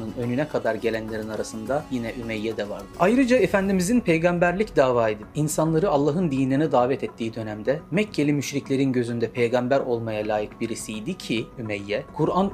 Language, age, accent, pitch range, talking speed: Turkish, 40-59, native, 120-160 Hz, 135 wpm